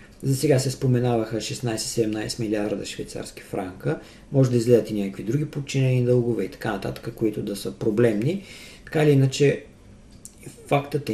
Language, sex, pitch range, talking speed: Bulgarian, male, 110-140 Hz, 150 wpm